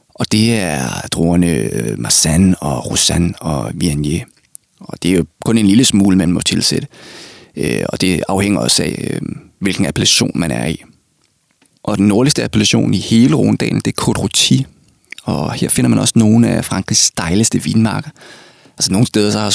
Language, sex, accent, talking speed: Danish, male, native, 165 wpm